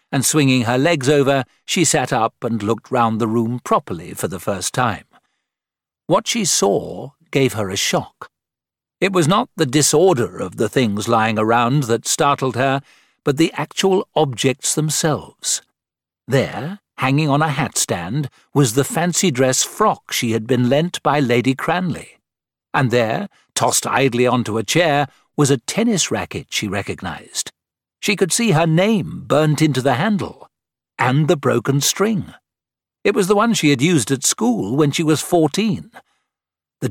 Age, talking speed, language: 60-79, 160 wpm, English